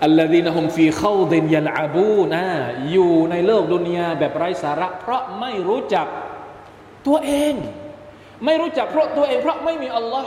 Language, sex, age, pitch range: Thai, male, 20-39, 145-245 Hz